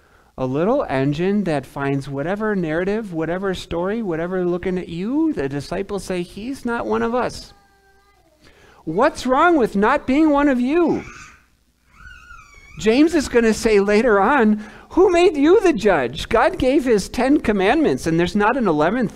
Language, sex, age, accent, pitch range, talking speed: English, male, 50-69, American, 135-215 Hz, 160 wpm